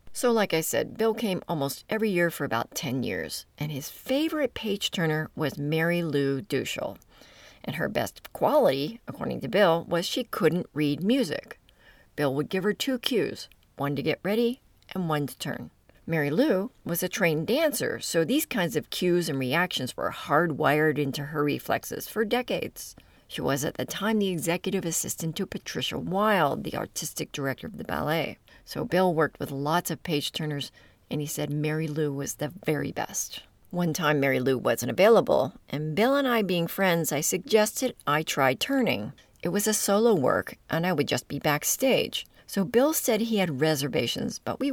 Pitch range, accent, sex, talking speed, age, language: 150-215 Hz, American, female, 185 wpm, 40-59, English